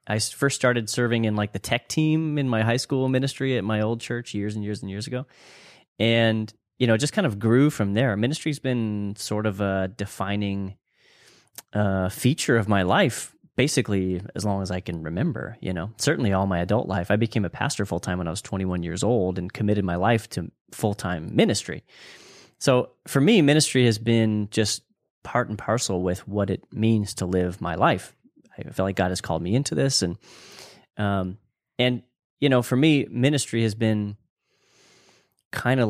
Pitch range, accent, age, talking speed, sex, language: 95-125 Hz, American, 30-49, 195 wpm, male, English